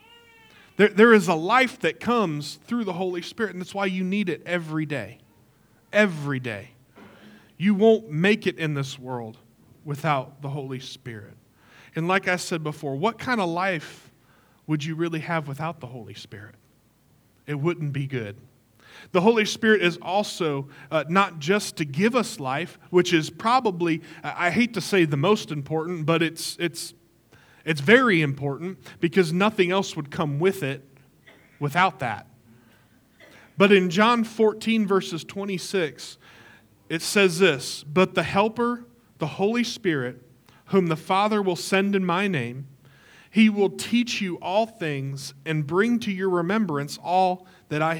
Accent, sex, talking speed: American, male, 160 wpm